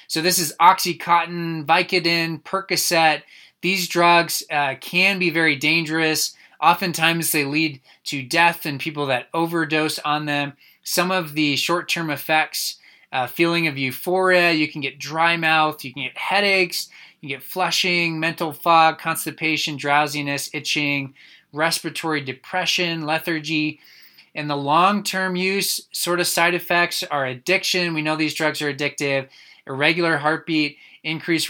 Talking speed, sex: 140 wpm, male